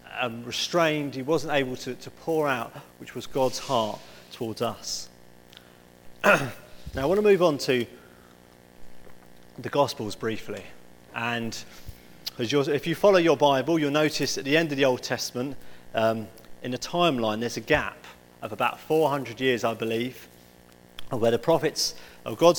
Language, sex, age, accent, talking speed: English, male, 40-59, British, 160 wpm